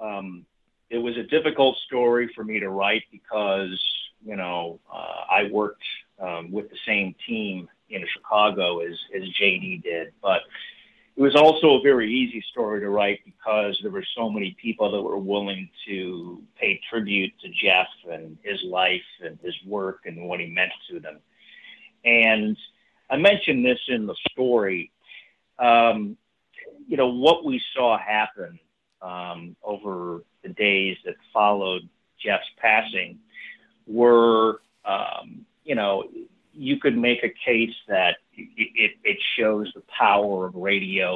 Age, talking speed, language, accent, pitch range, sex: 50-69, 150 wpm, English, American, 95-130 Hz, male